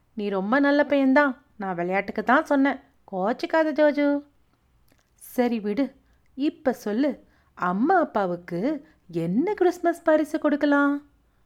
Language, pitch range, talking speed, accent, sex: Tamil, 235-330 Hz, 100 wpm, native, female